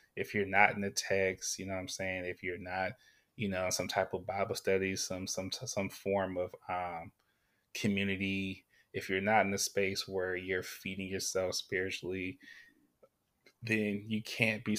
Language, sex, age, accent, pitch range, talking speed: English, male, 20-39, American, 95-105 Hz, 175 wpm